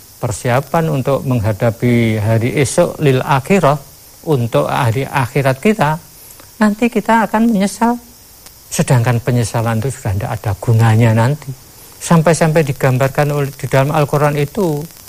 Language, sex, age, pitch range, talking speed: Indonesian, male, 50-69, 120-165 Hz, 120 wpm